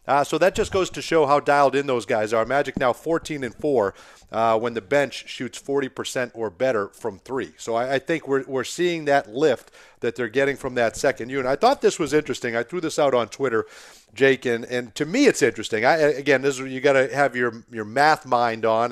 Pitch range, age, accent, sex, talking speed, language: 120-165 Hz, 40-59, American, male, 240 wpm, English